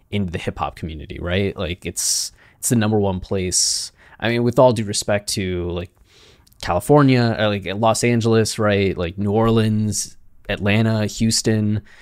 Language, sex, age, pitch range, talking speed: English, male, 20-39, 95-110 Hz, 160 wpm